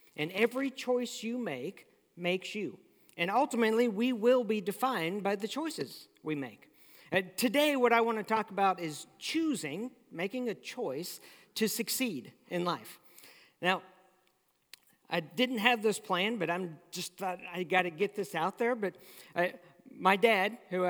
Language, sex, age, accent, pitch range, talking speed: English, male, 50-69, American, 185-245 Hz, 170 wpm